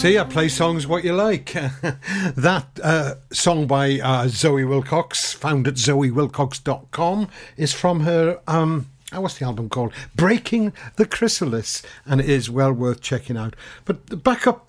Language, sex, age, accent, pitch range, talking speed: English, male, 60-79, British, 125-155 Hz, 155 wpm